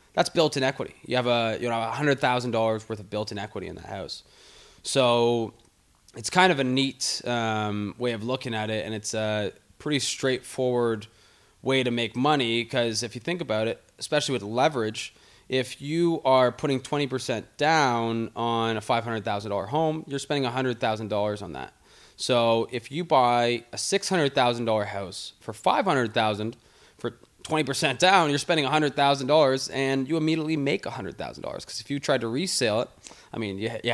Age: 20-39